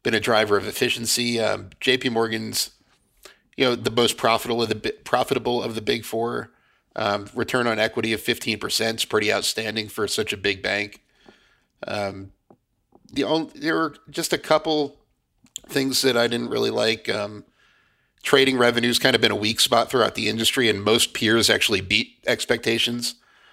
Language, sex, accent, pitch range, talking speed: English, male, American, 105-120 Hz, 170 wpm